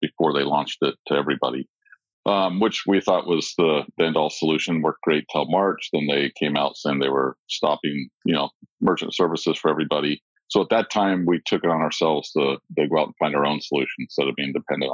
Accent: American